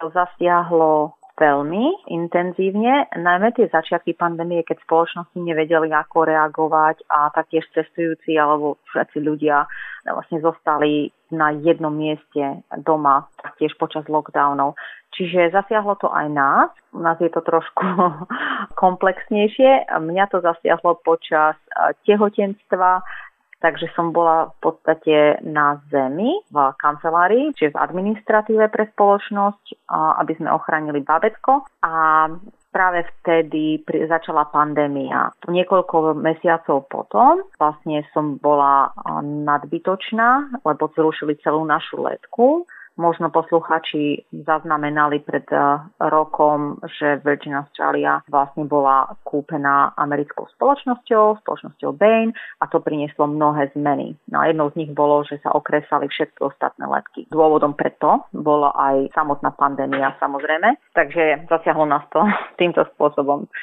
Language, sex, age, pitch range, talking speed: Slovak, female, 30-49, 150-180 Hz, 115 wpm